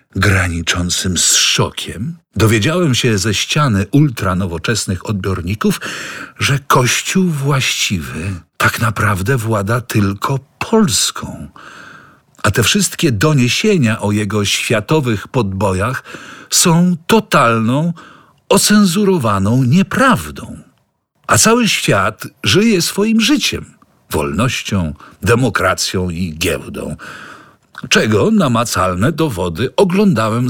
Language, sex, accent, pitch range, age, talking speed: English, male, Polish, 105-165 Hz, 50-69, 85 wpm